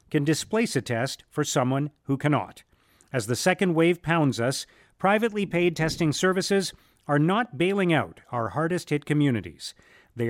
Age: 40-59